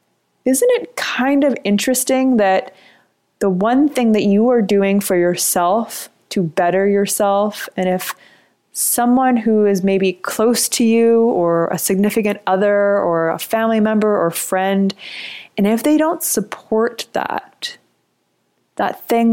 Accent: American